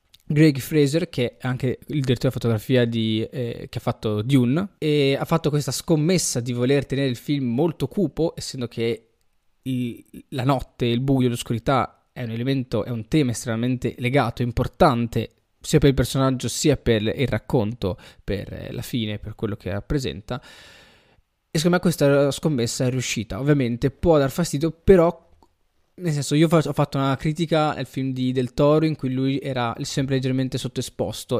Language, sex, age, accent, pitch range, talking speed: Italian, male, 20-39, native, 120-155 Hz, 170 wpm